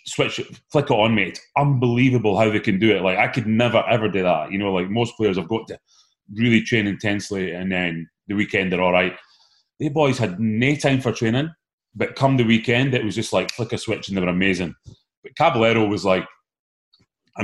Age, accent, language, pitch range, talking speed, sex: 30-49, British, English, 105-145 Hz, 225 wpm, male